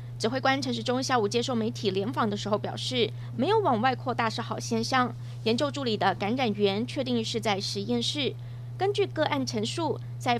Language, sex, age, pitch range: Chinese, female, 20-39, 115-130 Hz